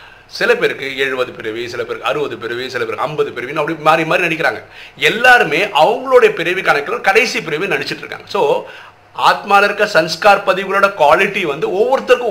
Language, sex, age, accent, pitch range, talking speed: Tamil, male, 50-69, native, 155-230 Hz, 95 wpm